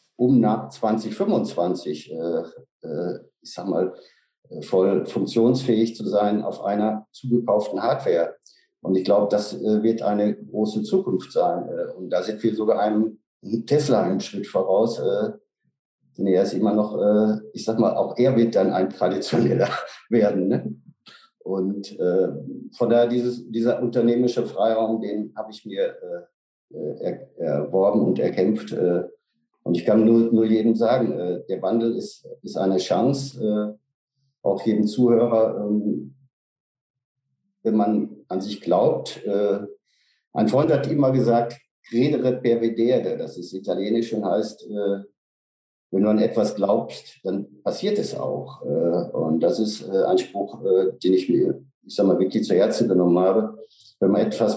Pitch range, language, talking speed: 105-125 Hz, German, 145 wpm